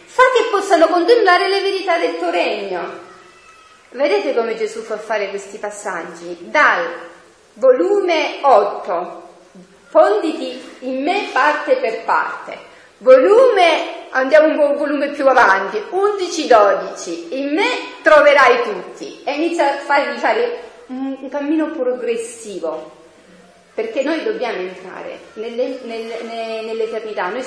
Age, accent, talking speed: 40-59, native, 120 wpm